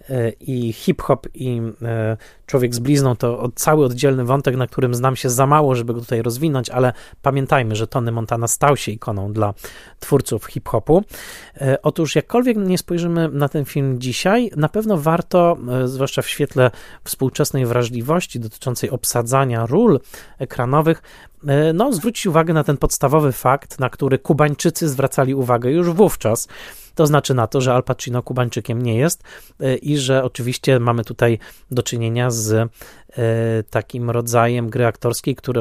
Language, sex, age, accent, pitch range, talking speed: Polish, male, 30-49, native, 120-145 Hz, 145 wpm